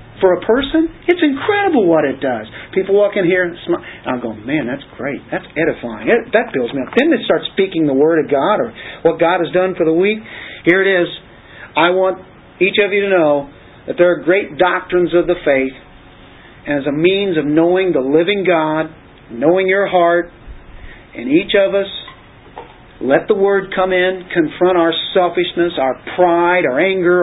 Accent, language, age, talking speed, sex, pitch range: American, English, 40-59, 190 wpm, male, 145-195 Hz